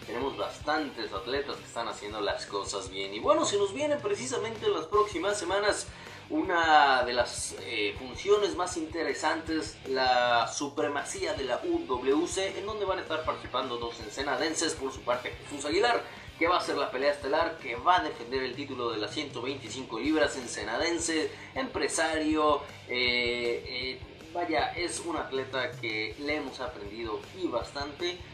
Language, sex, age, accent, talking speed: Spanish, male, 30-49, Mexican, 155 wpm